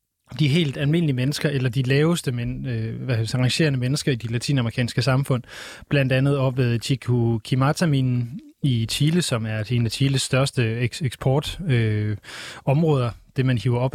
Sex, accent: male, native